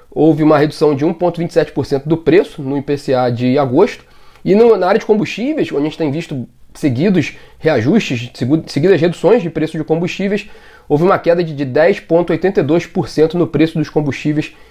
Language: Portuguese